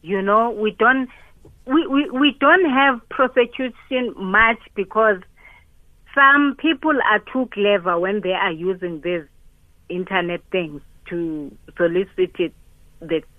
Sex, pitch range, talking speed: female, 180-230 Hz, 120 wpm